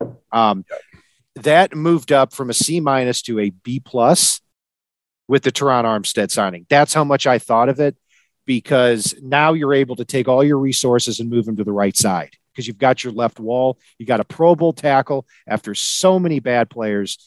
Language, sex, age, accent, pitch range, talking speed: English, male, 50-69, American, 115-150 Hz, 200 wpm